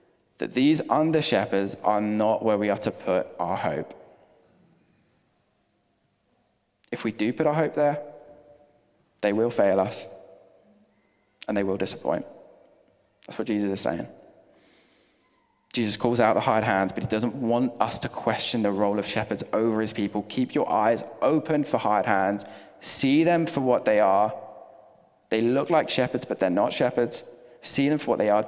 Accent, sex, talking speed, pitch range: British, male, 170 wpm, 100-130 Hz